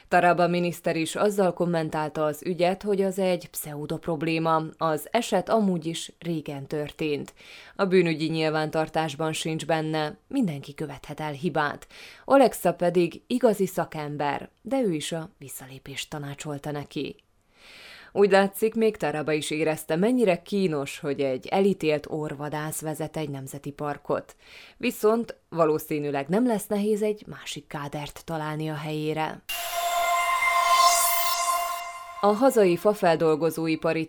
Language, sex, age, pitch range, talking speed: Hungarian, female, 20-39, 155-195 Hz, 120 wpm